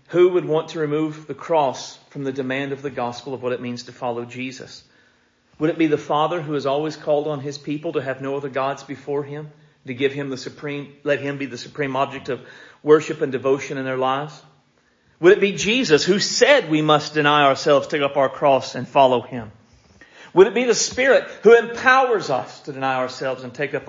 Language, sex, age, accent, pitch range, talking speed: English, male, 40-59, American, 125-150 Hz, 220 wpm